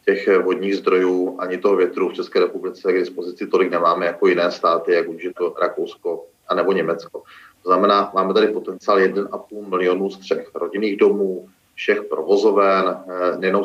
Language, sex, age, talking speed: Czech, male, 30-49, 160 wpm